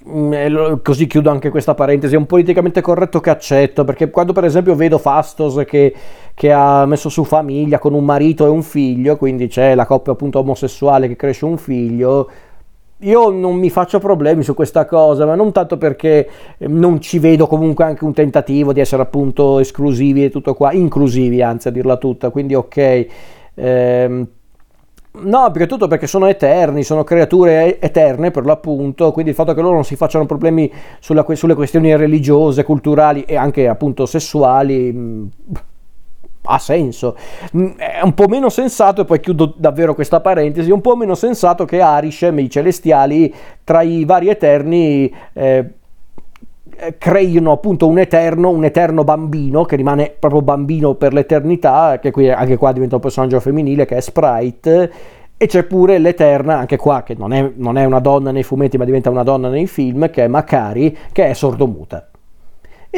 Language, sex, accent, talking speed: Italian, male, native, 175 wpm